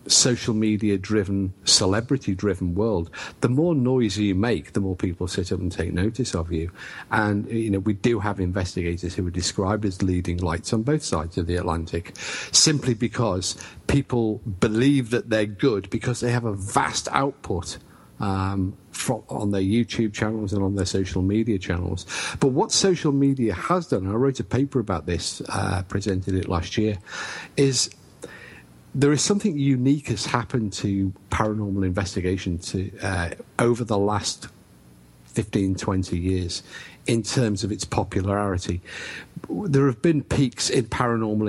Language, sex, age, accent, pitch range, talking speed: English, male, 50-69, British, 95-120 Hz, 160 wpm